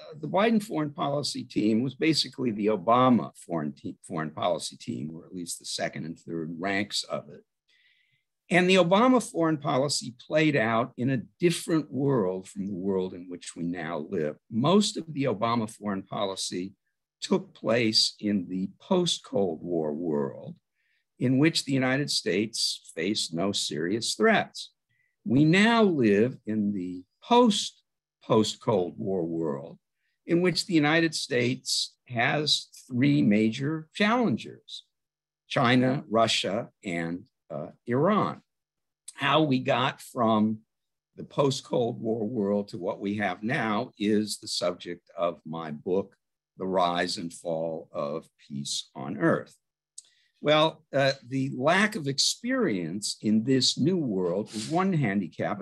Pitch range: 100-155 Hz